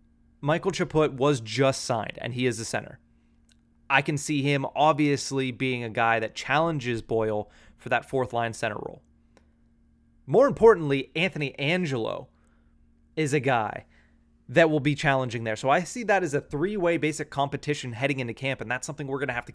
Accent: American